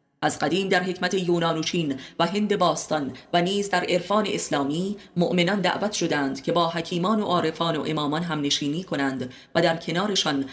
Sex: female